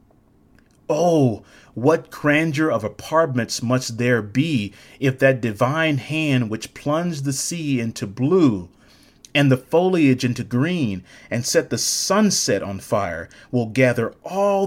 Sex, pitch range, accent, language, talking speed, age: male, 120-155 Hz, American, English, 130 wpm, 30-49